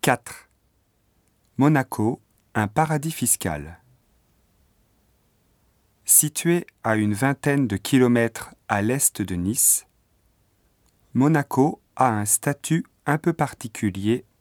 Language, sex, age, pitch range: Japanese, male, 40-59, 105-130 Hz